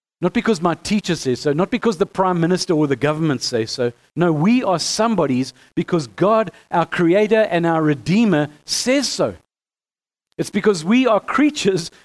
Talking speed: 170 wpm